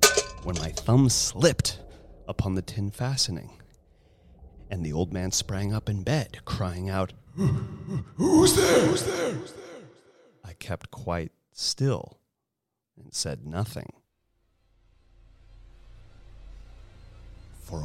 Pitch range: 80-105 Hz